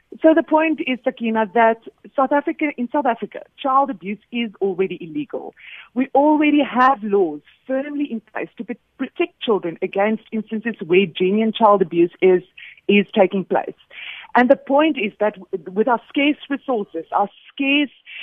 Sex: female